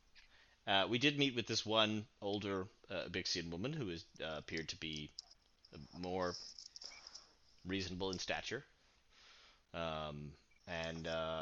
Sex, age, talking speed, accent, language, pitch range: male, 30-49, 120 wpm, American, English, 100-145 Hz